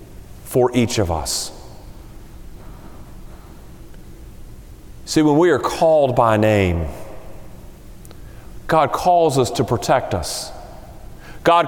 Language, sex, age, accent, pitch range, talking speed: English, male, 40-59, American, 150-195 Hz, 90 wpm